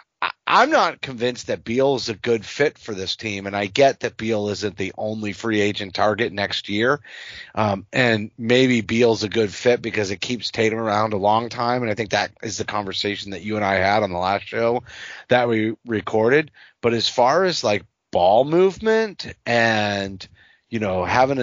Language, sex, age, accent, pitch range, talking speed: English, male, 30-49, American, 105-125 Hz, 195 wpm